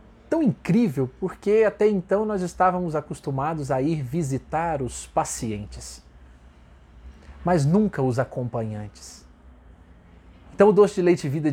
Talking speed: 120 wpm